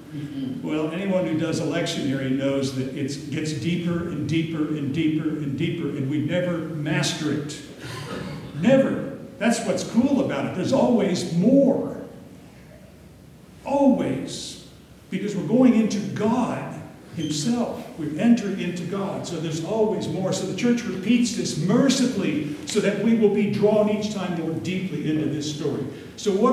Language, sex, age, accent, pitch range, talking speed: English, male, 60-79, American, 155-215 Hz, 150 wpm